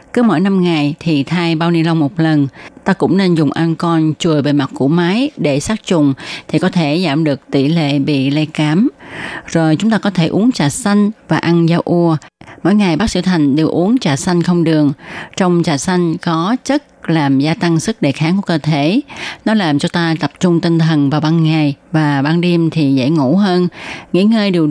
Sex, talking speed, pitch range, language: female, 225 wpm, 150-185 Hz, Vietnamese